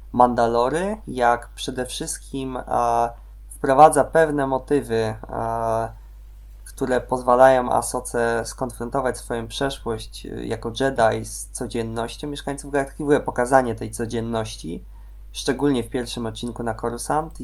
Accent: native